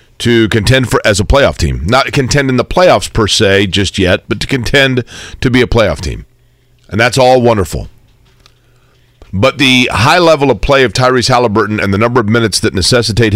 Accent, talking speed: American, 200 wpm